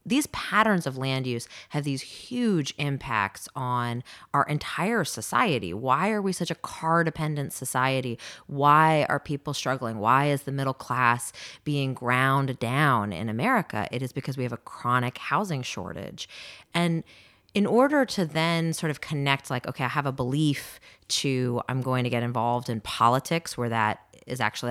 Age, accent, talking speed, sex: 30-49, American, 170 wpm, female